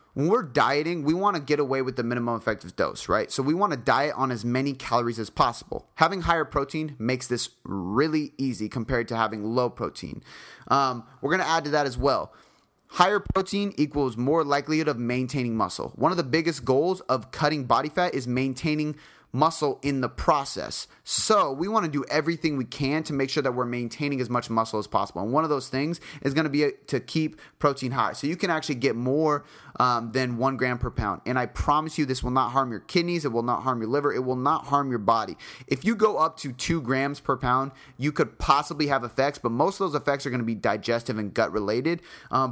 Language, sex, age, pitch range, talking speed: English, male, 20-39, 120-150 Hz, 230 wpm